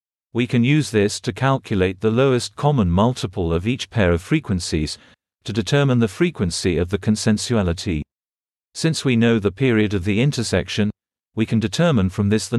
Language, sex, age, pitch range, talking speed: English, male, 40-59, 95-125 Hz, 170 wpm